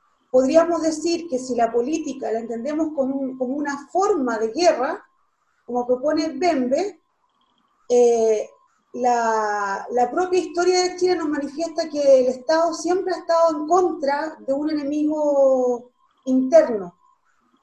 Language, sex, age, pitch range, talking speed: Spanish, female, 40-59, 255-340 Hz, 130 wpm